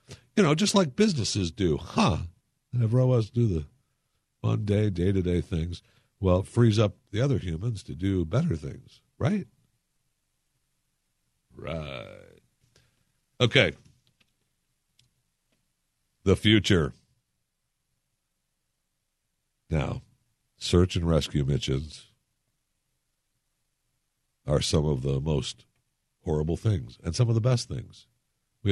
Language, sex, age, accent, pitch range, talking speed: English, male, 60-79, American, 80-105 Hz, 105 wpm